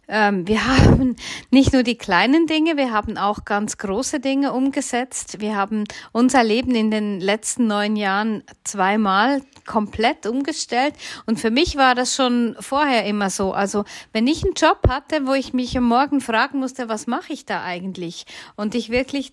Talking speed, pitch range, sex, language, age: 175 wpm, 220-270 Hz, female, German, 40-59